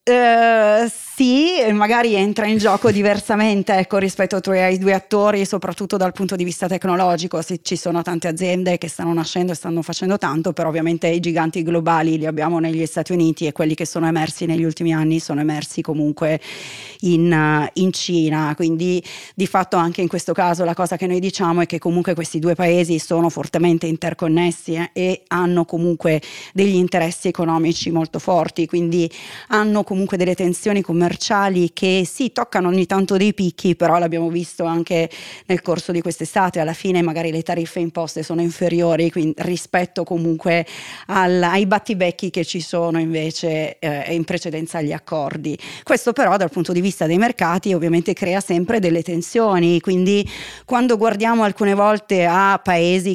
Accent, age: native, 30-49